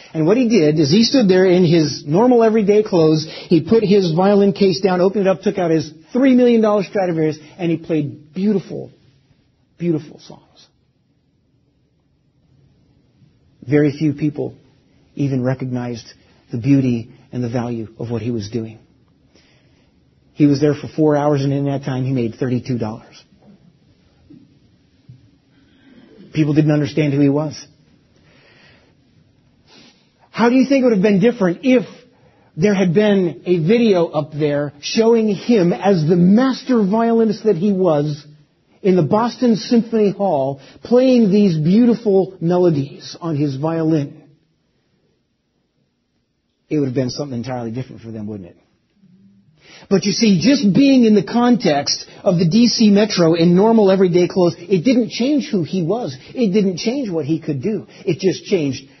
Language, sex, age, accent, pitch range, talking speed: English, male, 40-59, American, 145-205 Hz, 150 wpm